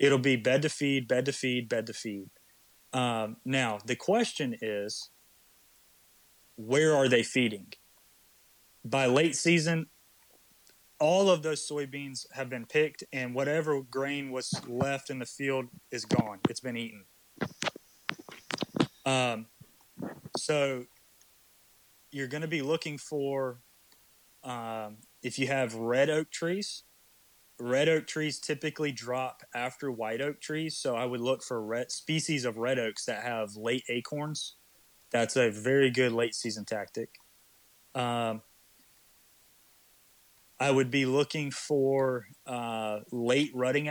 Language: English